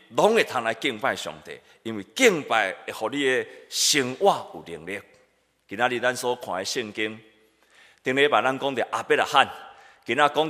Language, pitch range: Chinese, 140-215 Hz